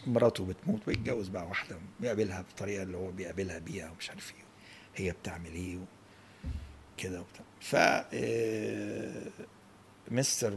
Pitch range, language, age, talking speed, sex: 95-115 Hz, Arabic, 60-79, 115 wpm, male